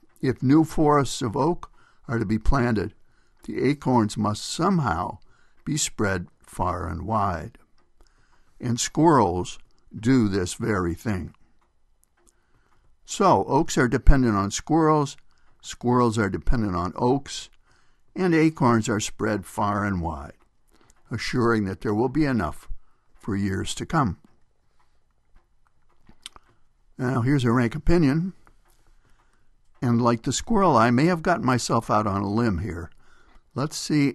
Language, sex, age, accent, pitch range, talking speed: English, male, 60-79, American, 105-130 Hz, 130 wpm